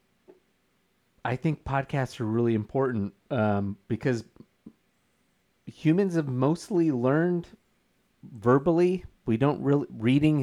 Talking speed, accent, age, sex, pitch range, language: 100 wpm, American, 30-49, male, 105-135 Hz, English